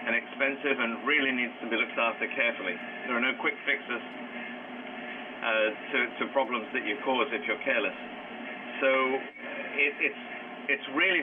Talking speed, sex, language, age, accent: 160 wpm, male, English, 40-59, British